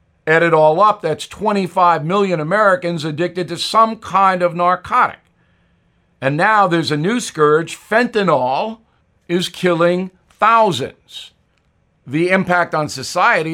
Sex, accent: male, American